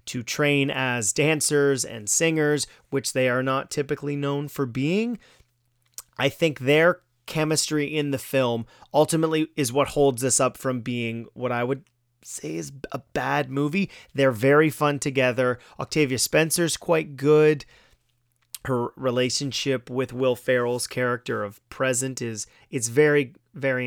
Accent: American